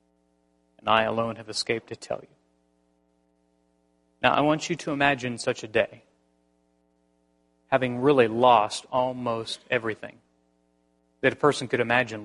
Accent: American